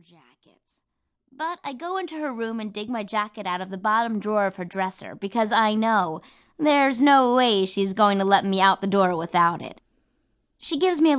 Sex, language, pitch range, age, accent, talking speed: female, English, 195-280 Hz, 20-39, American, 210 wpm